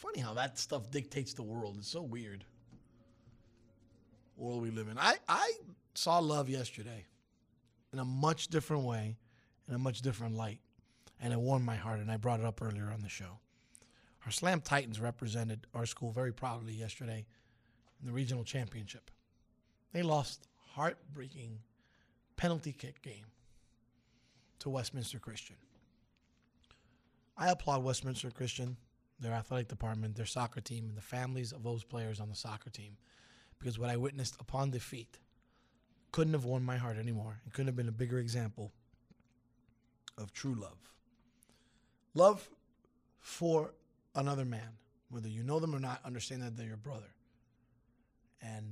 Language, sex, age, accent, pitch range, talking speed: English, male, 30-49, American, 115-130 Hz, 150 wpm